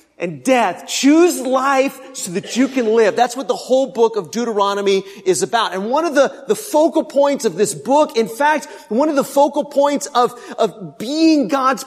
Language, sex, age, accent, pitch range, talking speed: English, male, 40-59, American, 165-245 Hz, 195 wpm